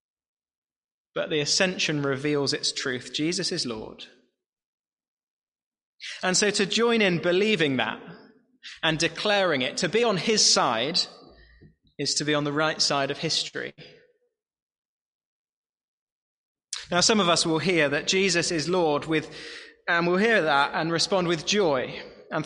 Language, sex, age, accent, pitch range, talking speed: English, male, 20-39, British, 150-205 Hz, 140 wpm